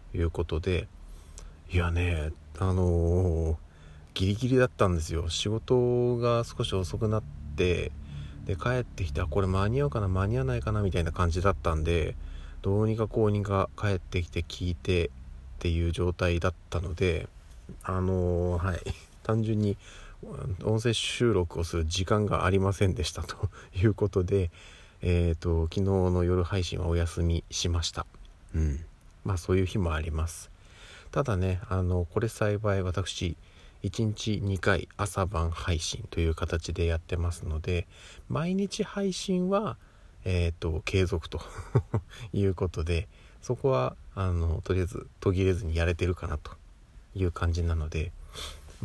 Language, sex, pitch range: Japanese, male, 85-100 Hz